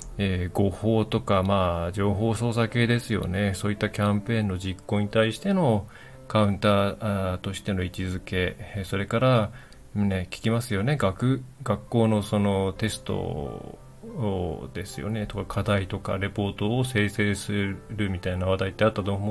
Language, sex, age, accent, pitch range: Japanese, male, 20-39, native, 100-130 Hz